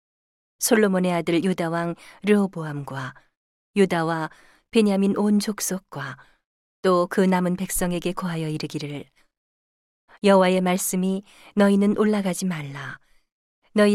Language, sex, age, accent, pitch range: Korean, female, 40-59, native, 165-200 Hz